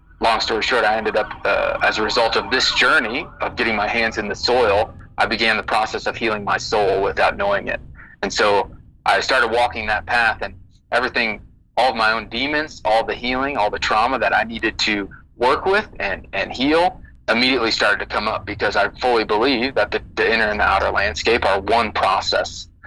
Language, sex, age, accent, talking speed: English, male, 30-49, American, 210 wpm